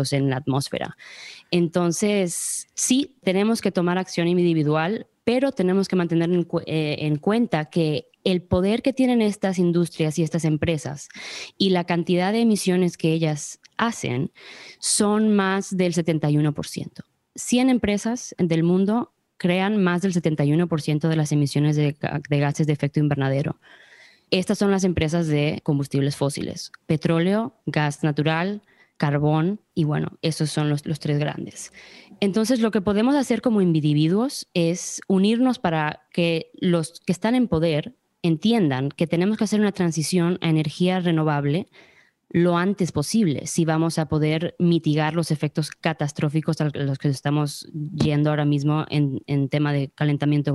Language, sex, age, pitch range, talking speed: Spanish, female, 20-39, 150-195 Hz, 150 wpm